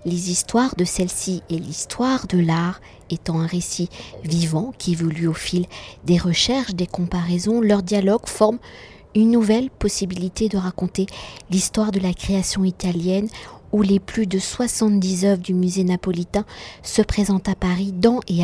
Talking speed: 155 wpm